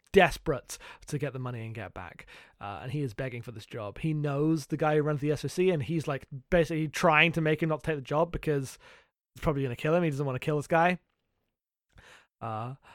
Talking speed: 235 wpm